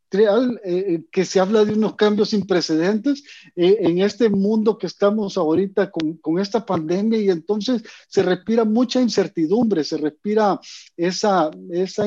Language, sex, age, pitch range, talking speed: Spanish, male, 50-69, 170-215 Hz, 145 wpm